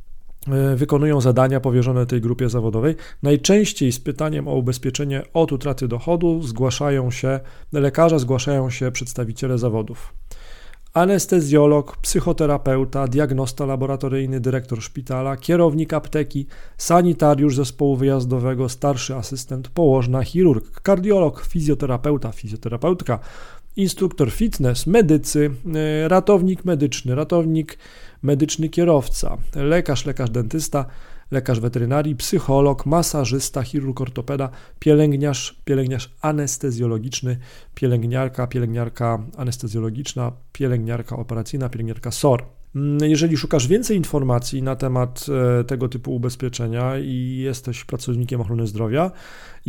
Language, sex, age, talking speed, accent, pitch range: Polish, male, 40-59, 100 wpm, native, 125-150 Hz